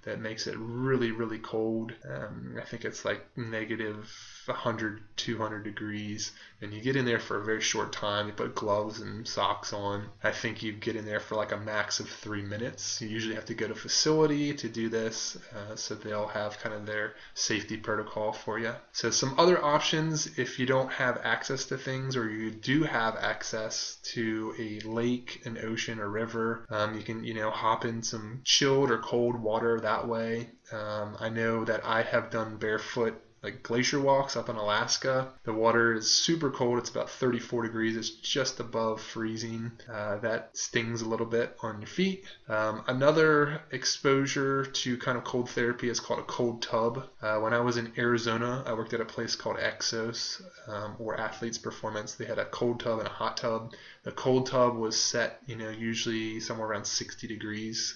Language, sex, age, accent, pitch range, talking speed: English, male, 20-39, American, 110-120 Hz, 195 wpm